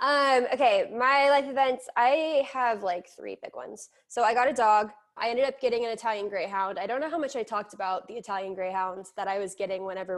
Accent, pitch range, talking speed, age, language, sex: American, 195-245 Hz, 230 wpm, 10-29, English, female